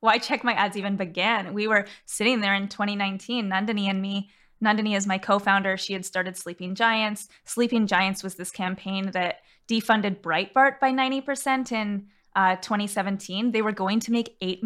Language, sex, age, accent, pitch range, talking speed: English, female, 20-39, American, 195-235 Hz, 175 wpm